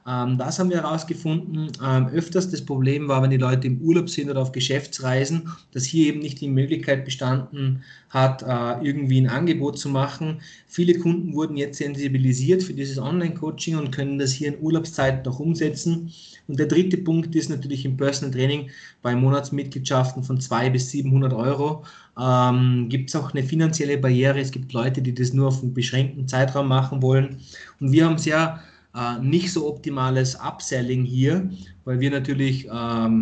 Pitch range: 130-155 Hz